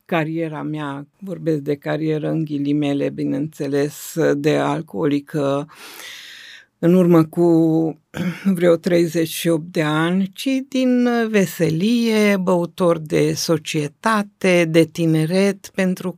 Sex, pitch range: female, 155-185 Hz